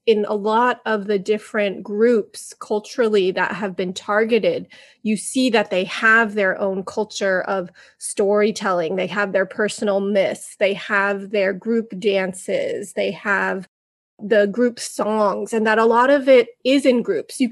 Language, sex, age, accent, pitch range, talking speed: English, female, 20-39, American, 200-235 Hz, 160 wpm